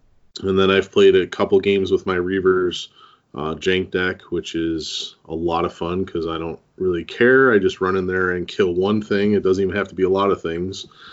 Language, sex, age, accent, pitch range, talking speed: English, male, 30-49, American, 90-110 Hz, 230 wpm